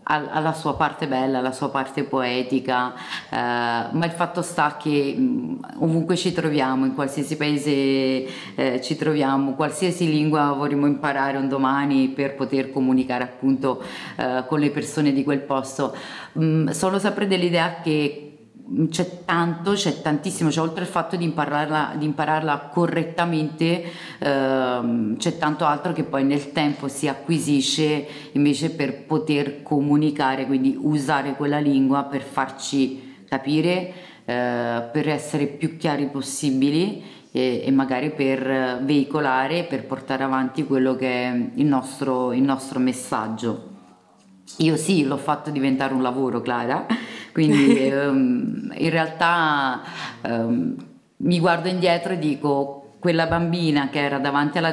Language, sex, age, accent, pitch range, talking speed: Italian, female, 30-49, native, 135-165 Hz, 130 wpm